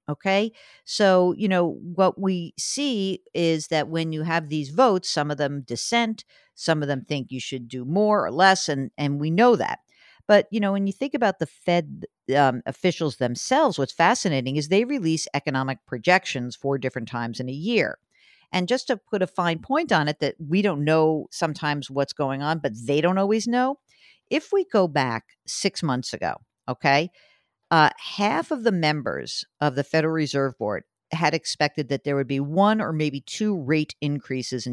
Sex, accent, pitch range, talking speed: female, American, 140-195 Hz, 190 wpm